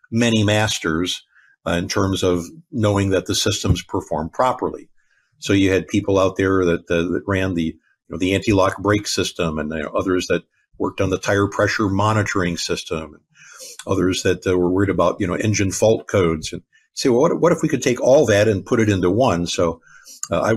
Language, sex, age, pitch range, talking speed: English, male, 50-69, 95-115 Hz, 210 wpm